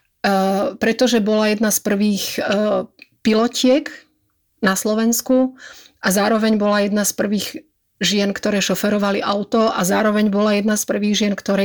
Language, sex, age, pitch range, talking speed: Slovak, female, 30-49, 195-225 Hz, 135 wpm